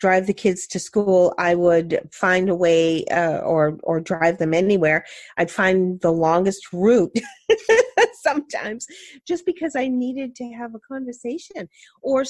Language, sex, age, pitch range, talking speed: English, female, 40-59, 205-305 Hz, 150 wpm